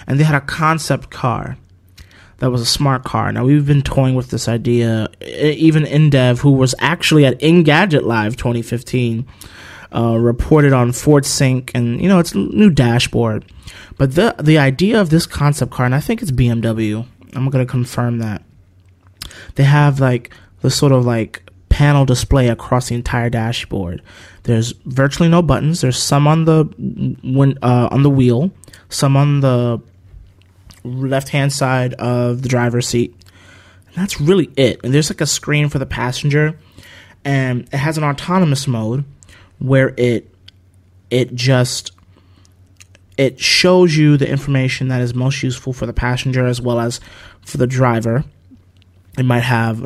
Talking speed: 160 wpm